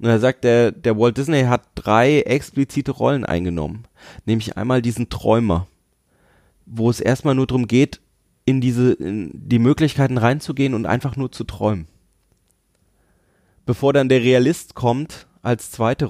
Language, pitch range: German, 110-140 Hz